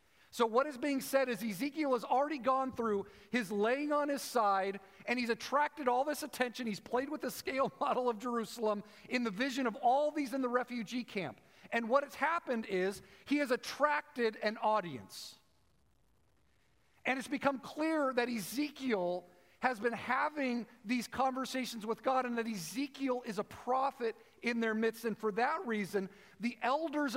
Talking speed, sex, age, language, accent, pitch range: 170 wpm, male, 40-59, English, American, 215-270 Hz